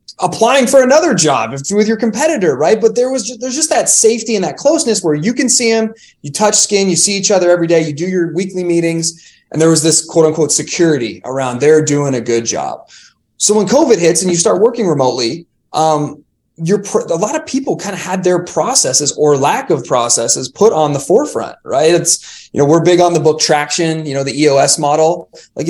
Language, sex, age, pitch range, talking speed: English, male, 20-39, 140-205 Hz, 225 wpm